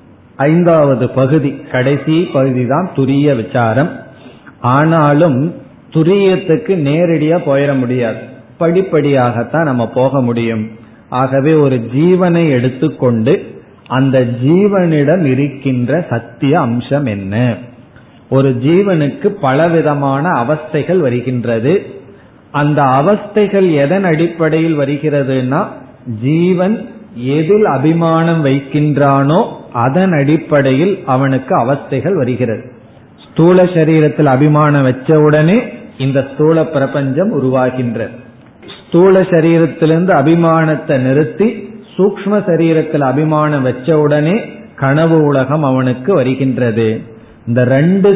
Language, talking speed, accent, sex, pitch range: Tamil, 80 wpm, native, male, 130-165 Hz